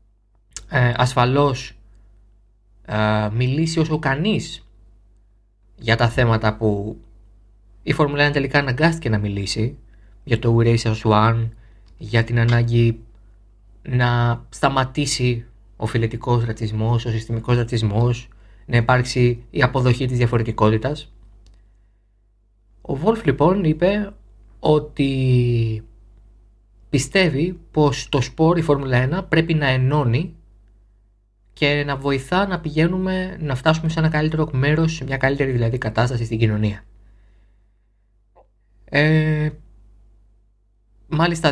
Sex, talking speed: male, 105 wpm